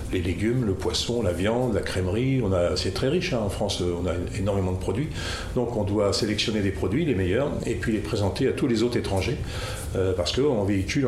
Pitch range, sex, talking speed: 95-115 Hz, male, 225 wpm